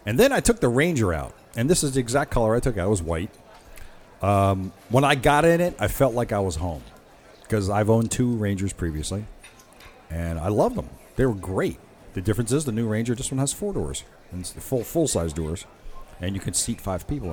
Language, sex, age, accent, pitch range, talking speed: English, male, 40-59, American, 95-135 Hz, 235 wpm